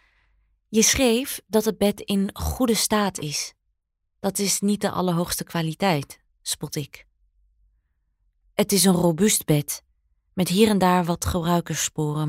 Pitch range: 140-195 Hz